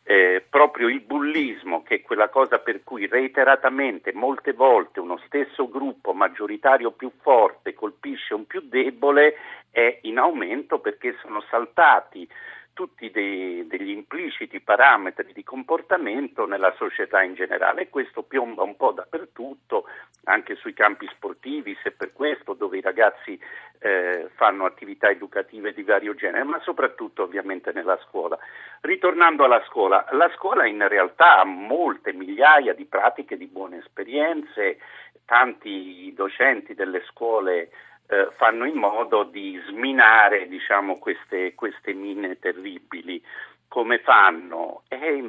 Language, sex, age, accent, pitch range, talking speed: Italian, male, 50-69, native, 295-435 Hz, 135 wpm